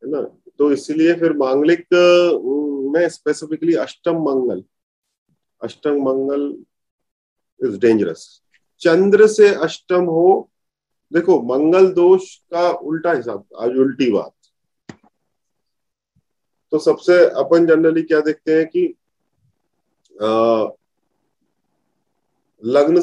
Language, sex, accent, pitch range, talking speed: Hindi, male, native, 155-205 Hz, 95 wpm